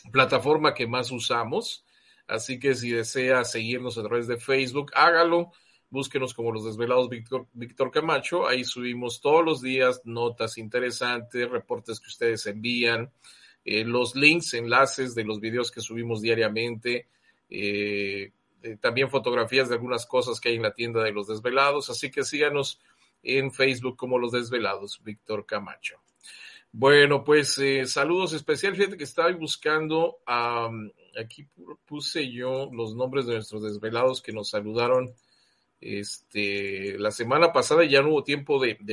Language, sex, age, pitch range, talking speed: Spanish, male, 40-59, 115-140 Hz, 150 wpm